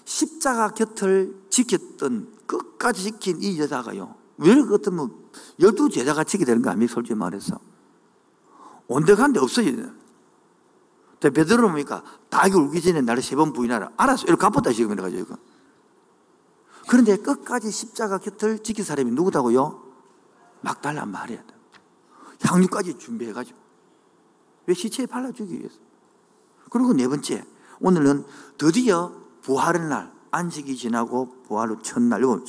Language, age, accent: Korean, 50-69, native